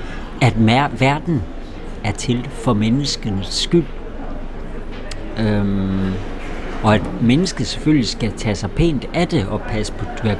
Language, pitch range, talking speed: Danish, 100-135 Hz, 135 wpm